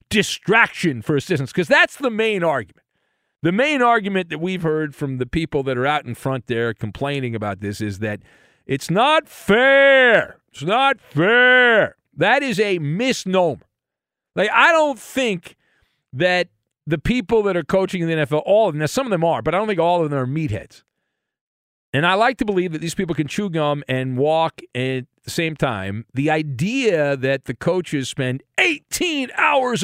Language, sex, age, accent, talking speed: English, male, 50-69, American, 185 wpm